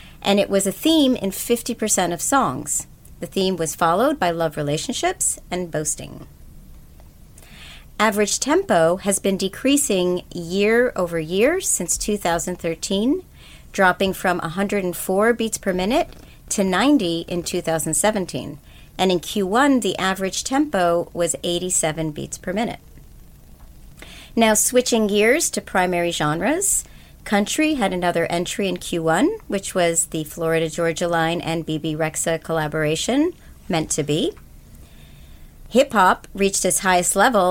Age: 40-59